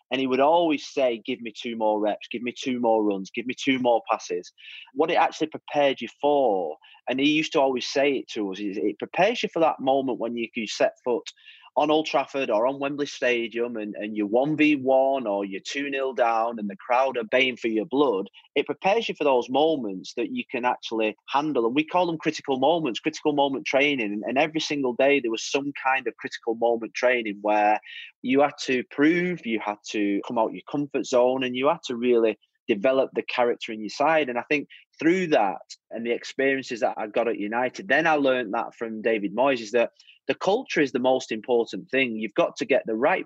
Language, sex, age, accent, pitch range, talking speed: English, male, 30-49, British, 115-145 Hz, 225 wpm